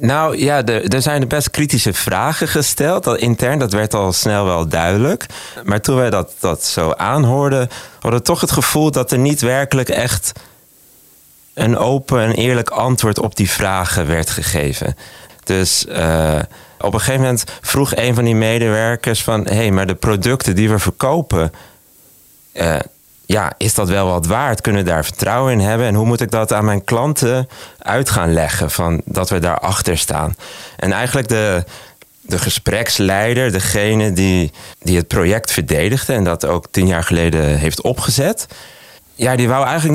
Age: 30-49